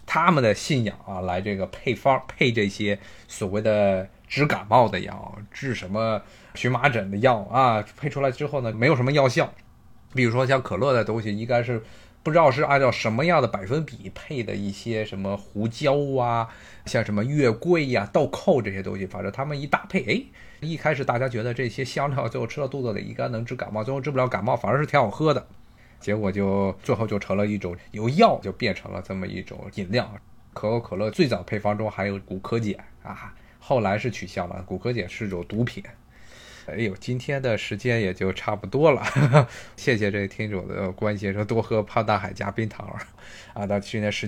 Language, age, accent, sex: Chinese, 20-39, native, male